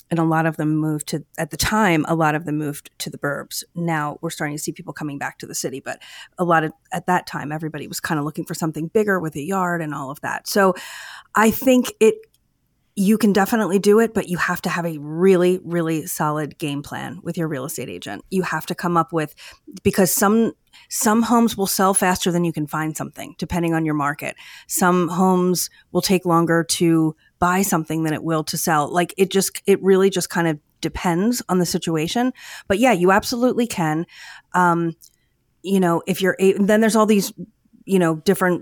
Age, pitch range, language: 30-49, 155-190 Hz, English